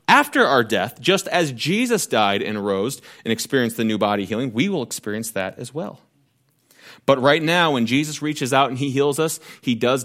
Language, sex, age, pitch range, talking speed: English, male, 30-49, 120-155 Hz, 205 wpm